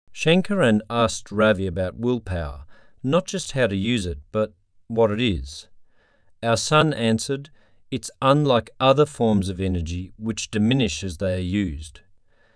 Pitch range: 90-120 Hz